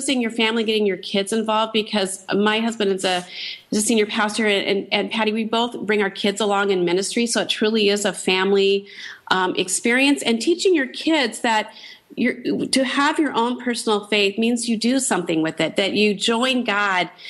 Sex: female